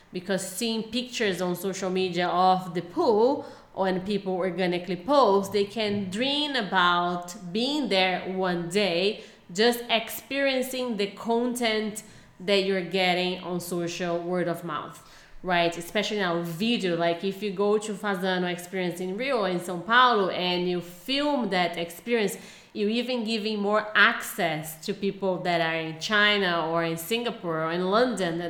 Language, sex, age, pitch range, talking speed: English, female, 30-49, 175-225 Hz, 150 wpm